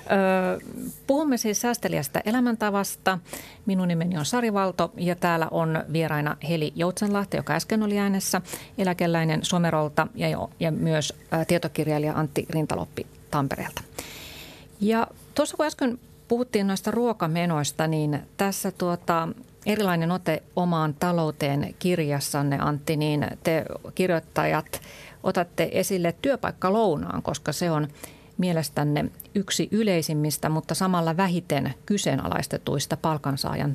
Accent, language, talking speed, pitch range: native, Finnish, 110 wpm, 155-195 Hz